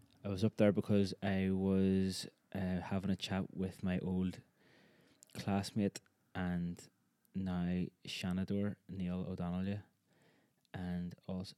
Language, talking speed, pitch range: English, 115 wpm, 90-100 Hz